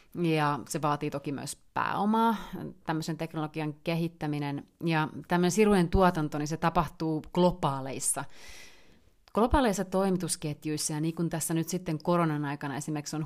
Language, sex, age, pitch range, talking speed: Finnish, female, 30-49, 145-165 Hz, 130 wpm